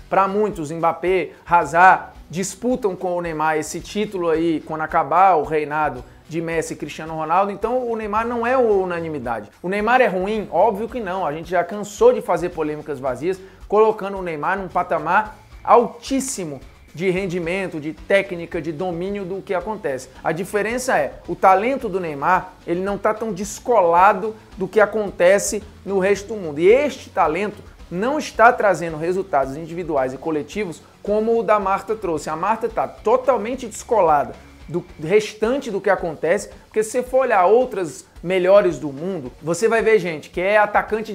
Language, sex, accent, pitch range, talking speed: Portuguese, male, Brazilian, 170-215 Hz, 170 wpm